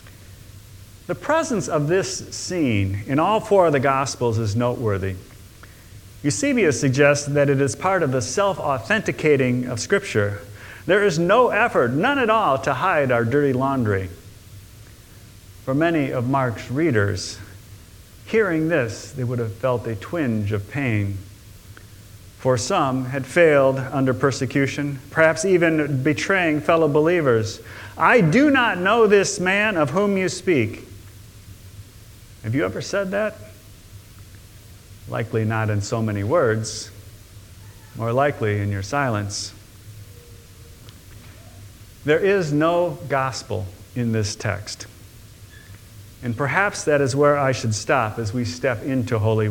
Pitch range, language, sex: 105-145 Hz, English, male